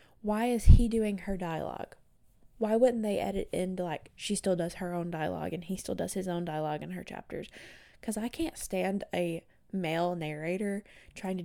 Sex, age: female, 20-39